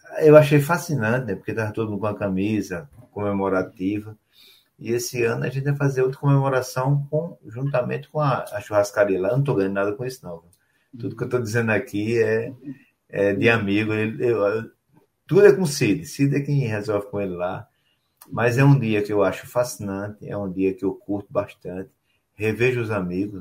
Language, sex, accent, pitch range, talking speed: Portuguese, male, Brazilian, 100-135 Hz, 205 wpm